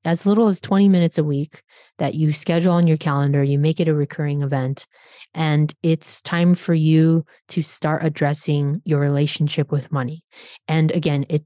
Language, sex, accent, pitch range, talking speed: English, female, American, 150-175 Hz, 180 wpm